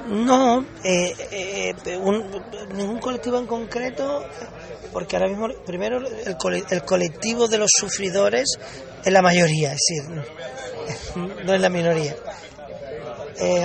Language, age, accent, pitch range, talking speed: Spanish, 30-49, Spanish, 165-215 Hz, 130 wpm